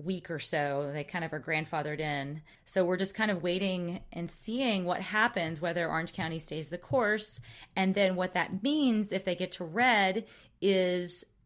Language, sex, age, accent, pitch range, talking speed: English, female, 30-49, American, 165-200 Hz, 190 wpm